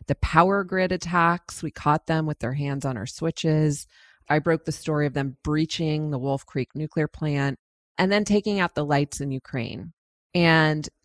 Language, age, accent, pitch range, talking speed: English, 30-49, American, 140-175 Hz, 185 wpm